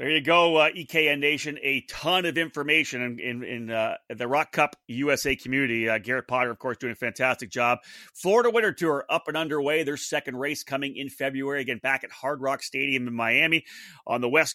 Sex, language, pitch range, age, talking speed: male, English, 125-155 Hz, 30-49, 210 wpm